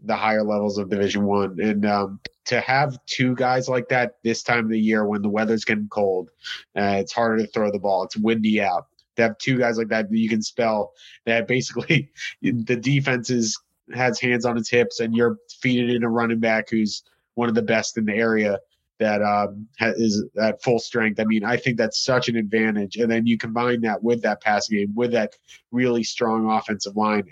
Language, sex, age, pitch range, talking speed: English, male, 30-49, 105-120 Hz, 215 wpm